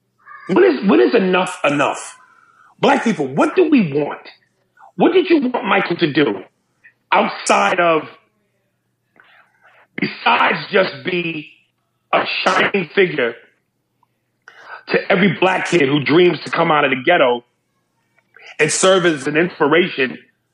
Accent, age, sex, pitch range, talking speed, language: American, 40-59, male, 165-230 Hz, 125 wpm, English